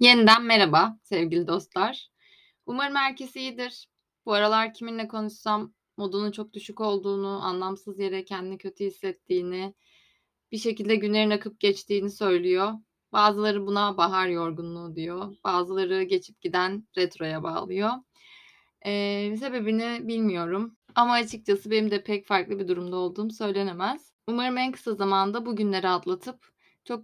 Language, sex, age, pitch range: Turkish, female, 20-39, 190-220 Hz